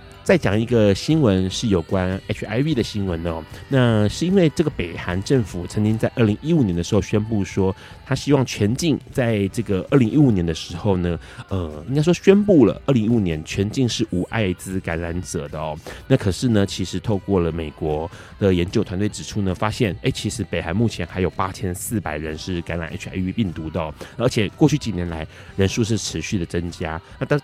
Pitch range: 90-115 Hz